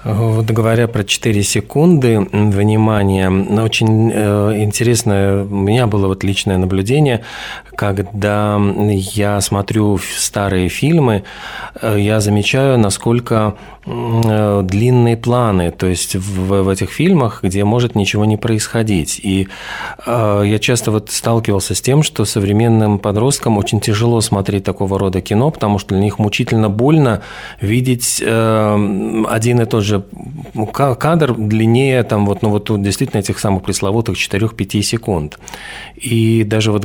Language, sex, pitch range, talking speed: Russian, male, 95-115 Hz, 120 wpm